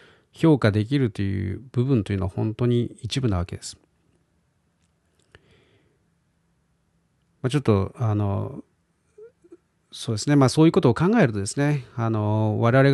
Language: Japanese